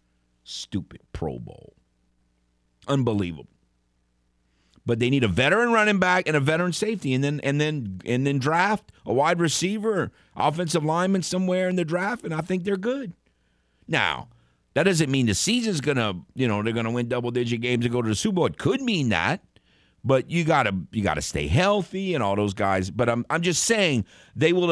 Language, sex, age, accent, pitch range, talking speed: English, male, 50-69, American, 105-155 Hz, 190 wpm